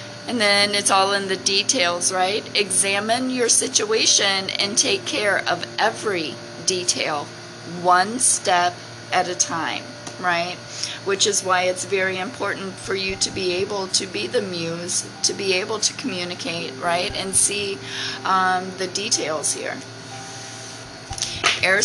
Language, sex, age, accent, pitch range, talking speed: English, female, 30-49, American, 130-200 Hz, 140 wpm